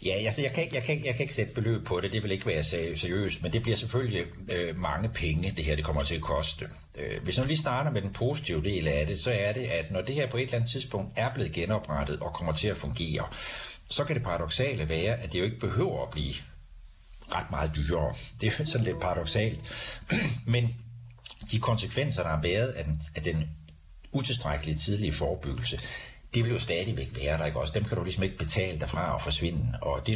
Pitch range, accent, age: 80-115 Hz, native, 60-79